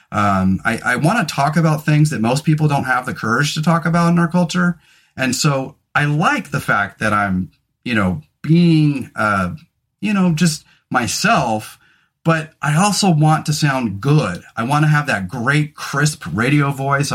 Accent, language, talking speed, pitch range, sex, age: American, English, 180 wpm, 115-165 Hz, male, 30-49